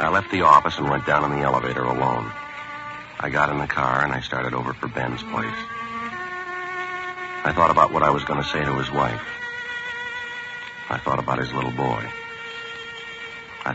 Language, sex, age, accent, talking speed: English, male, 60-79, American, 185 wpm